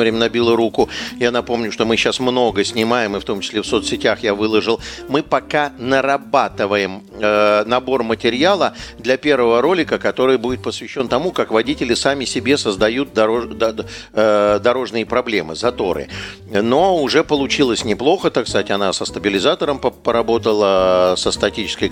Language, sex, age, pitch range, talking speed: Russian, male, 50-69, 105-135 Hz, 135 wpm